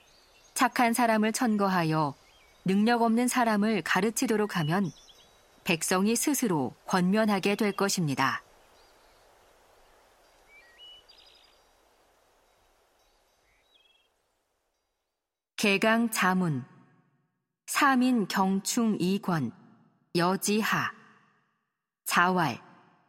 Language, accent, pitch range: Korean, native, 180-230 Hz